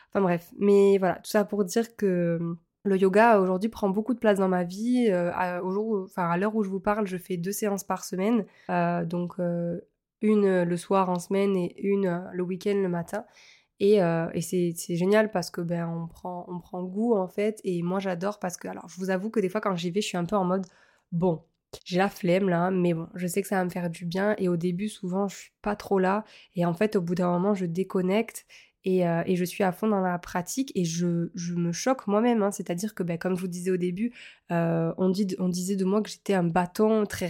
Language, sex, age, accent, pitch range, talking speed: French, female, 20-39, French, 180-210 Hz, 255 wpm